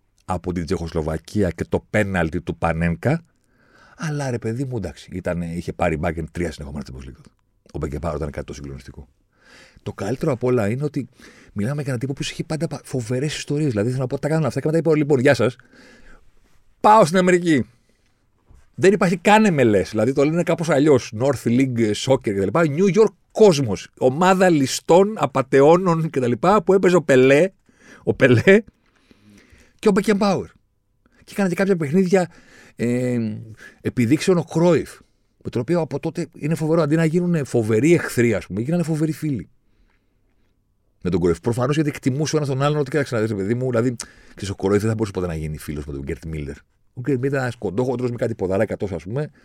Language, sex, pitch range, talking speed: Greek, male, 100-155 Hz, 180 wpm